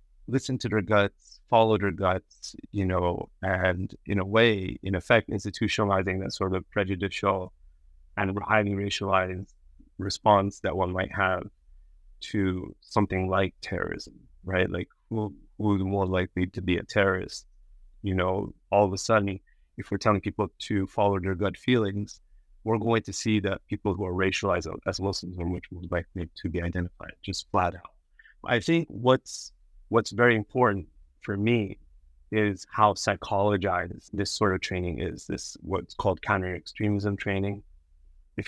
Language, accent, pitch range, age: English, American, 90-105 Hz, 30-49